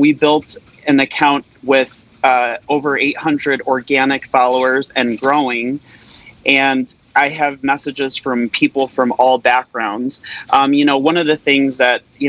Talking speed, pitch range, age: 145 wpm, 120-140 Hz, 30-49